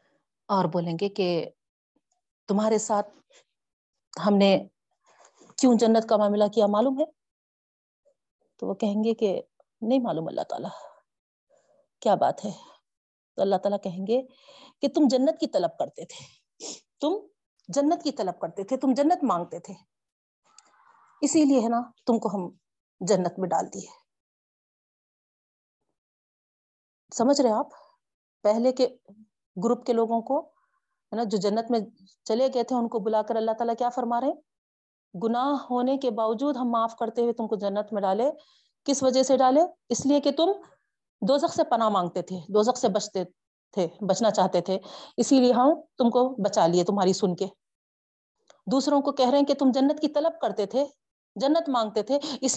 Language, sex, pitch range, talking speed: Urdu, female, 205-280 Hz, 165 wpm